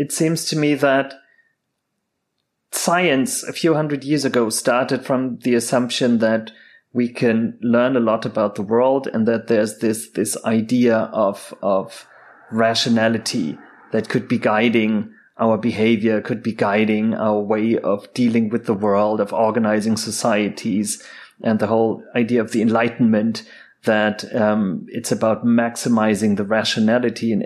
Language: German